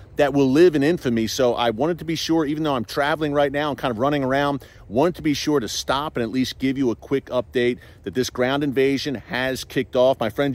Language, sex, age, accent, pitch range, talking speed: English, male, 40-59, American, 120-145 Hz, 255 wpm